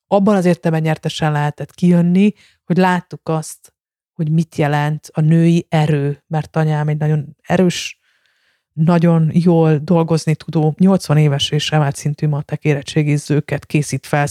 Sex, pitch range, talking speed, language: female, 150-170 Hz, 130 wpm, Hungarian